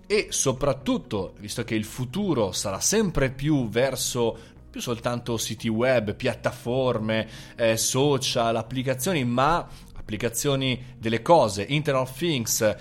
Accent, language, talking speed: native, Italian, 115 wpm